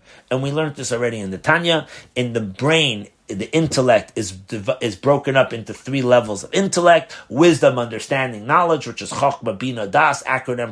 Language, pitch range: English, 120-155 Hz